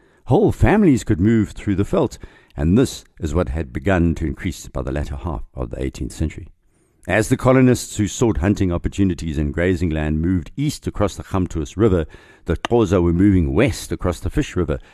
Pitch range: 80-105 Hz